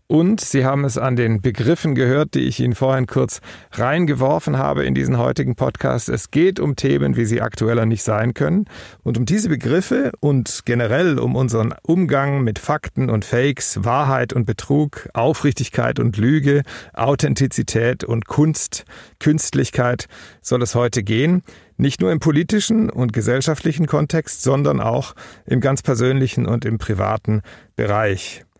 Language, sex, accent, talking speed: German, male, German, 150 wpm